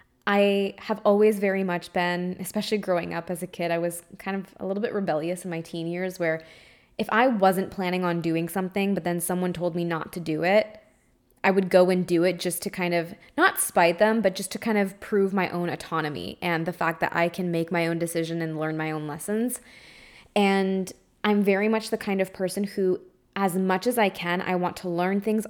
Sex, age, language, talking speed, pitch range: female, 20-39, English, 230 wpm, 170-195 Hz